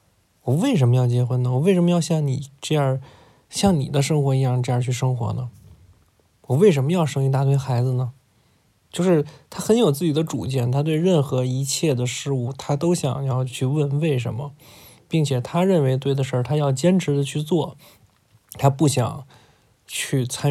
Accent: native